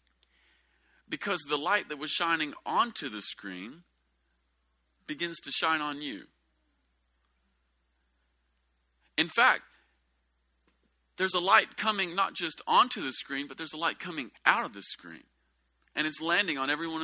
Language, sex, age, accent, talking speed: English, male, 40-59, American, 135 wpm